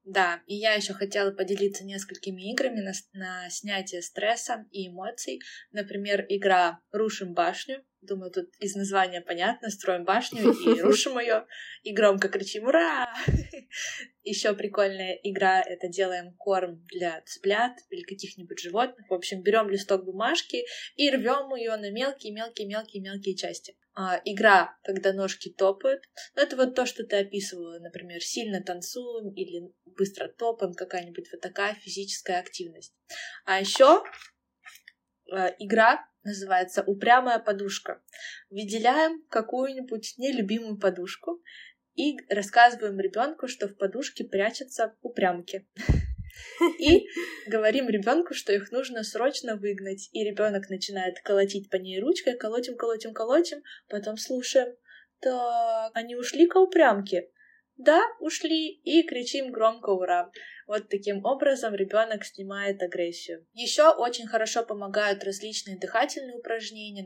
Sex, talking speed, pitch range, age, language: female, 125 wpm, 190-245 Hz, 20-39, Russian